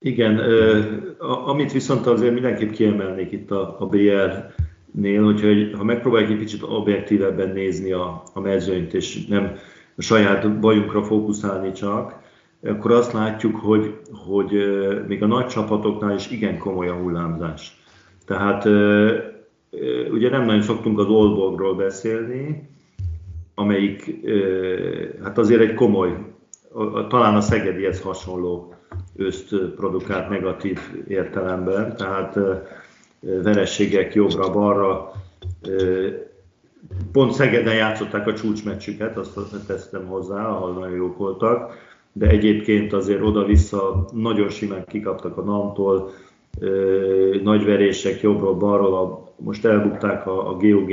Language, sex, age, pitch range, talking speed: Hungarian, male, 50-69, 95-110 Hz, 110 wpm